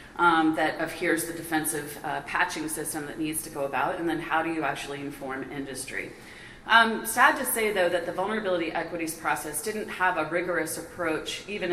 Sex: female